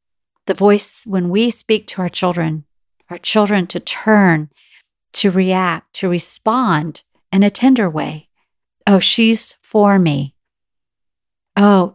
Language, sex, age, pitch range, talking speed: English, female, 50-69, 175-225 Hz, 125 wpm